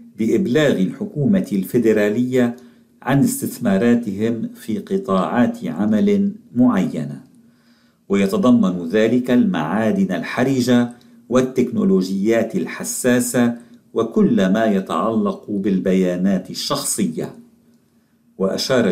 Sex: male